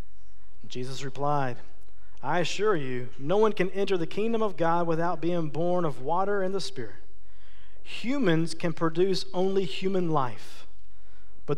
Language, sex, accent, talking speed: English, male, American, 145 wpm